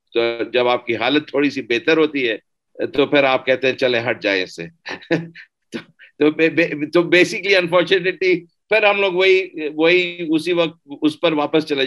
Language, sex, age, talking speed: Urdu, male, 50-69, 80 wpm